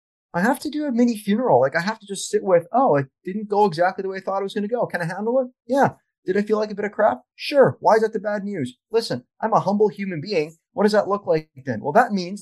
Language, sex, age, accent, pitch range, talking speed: English, male, 30-49, American, 155-225 Hz, 305 wpm